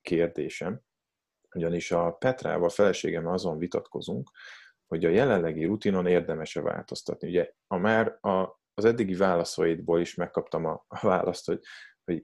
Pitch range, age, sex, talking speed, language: 85-100 Hz, 30-49, male, 125 wpm, Hungarian